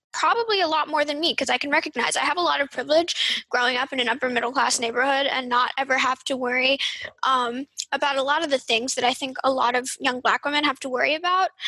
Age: 10-29